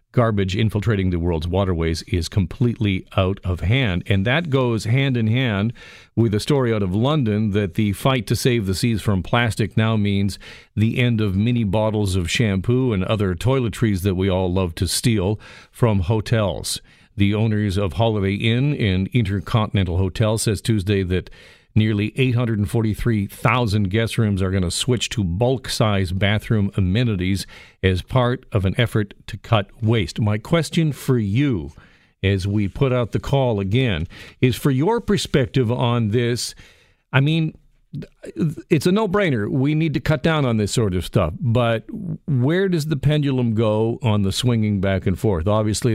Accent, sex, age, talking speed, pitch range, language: American, male, 50-69, 165 wpm, 100-125 Hz, English